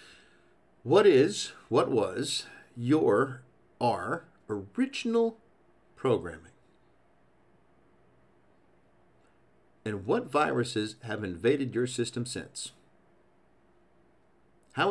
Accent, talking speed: American, 70 wpm